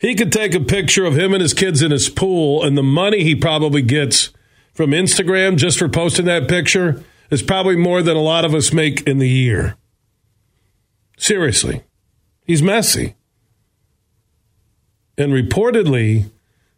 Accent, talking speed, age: American, 155 wpm, 40-59